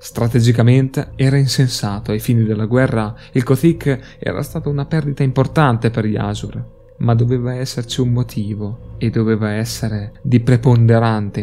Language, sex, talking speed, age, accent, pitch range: Italian, male, 140 wpm, 20-39, native, 110-130 Hz